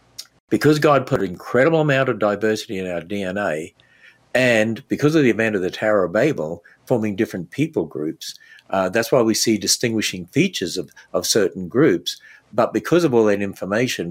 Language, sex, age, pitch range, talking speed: English, male, 60-79, 95-115 Hz, 180 wpm